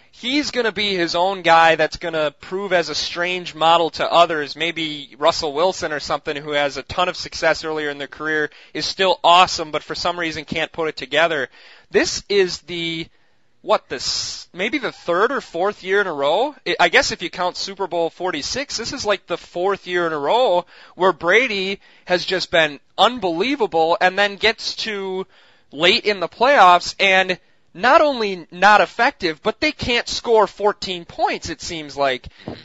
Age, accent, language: 20-39, American, English